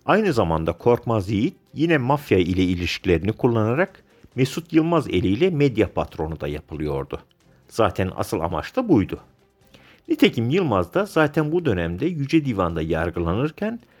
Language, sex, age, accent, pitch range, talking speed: Turkish, male, 50-69, native, 90-145 Hz, 130 wpm